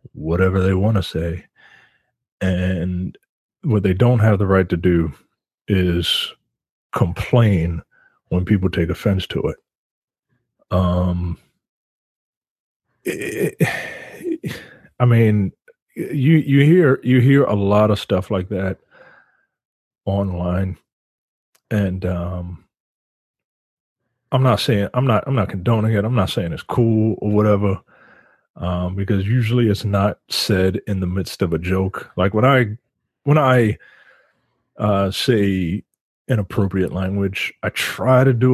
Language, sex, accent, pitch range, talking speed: English, male, American, 90-115 Hz, 125 wpm